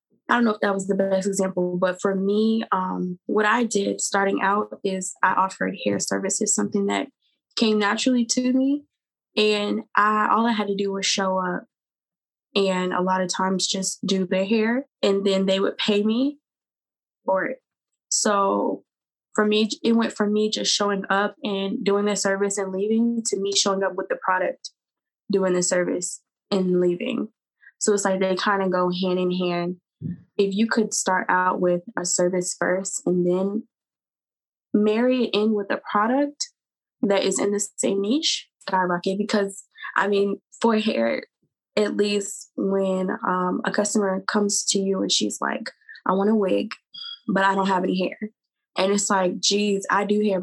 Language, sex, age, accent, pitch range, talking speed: English, female, 20-39, American, 185-210 Hz, 180 wpm